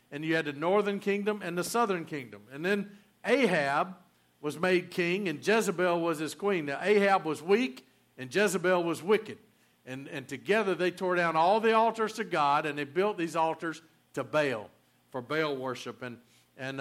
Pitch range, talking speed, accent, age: 130-195 Hz, 185 wpm, American, 50-69